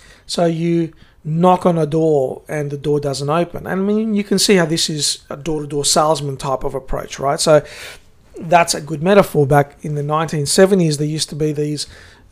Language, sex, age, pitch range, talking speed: English, male, 50-69, 150-180 Hz, 205 wpm